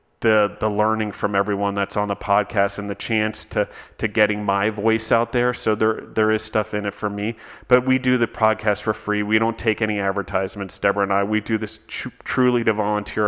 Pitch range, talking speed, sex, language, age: 100-110 Hz, 225 wpm, male, English, 30-49